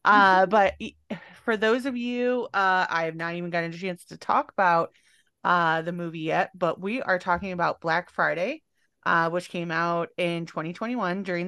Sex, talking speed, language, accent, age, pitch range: female, 185 wpm, English, American, 30-49, 170-205 Hz